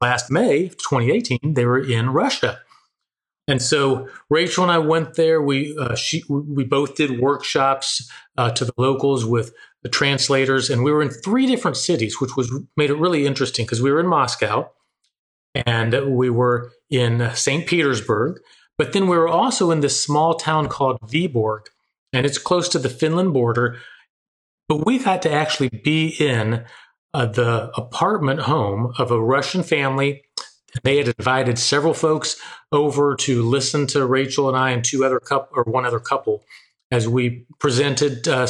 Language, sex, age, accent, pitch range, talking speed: English, male, 40-59, American, 125-150 Hz, 170 wpm